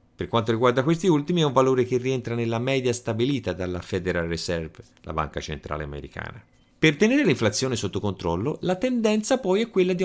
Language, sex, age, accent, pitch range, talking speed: Italian, male, 30-49, native, 95-155 Hz, 185 wpm